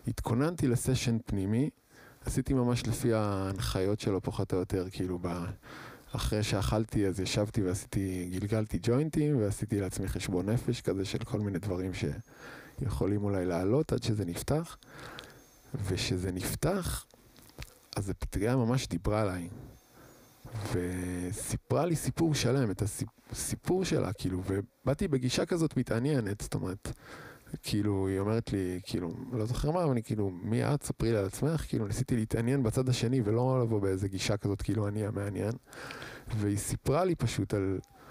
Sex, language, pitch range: male, Hebrew, 95-130 Hz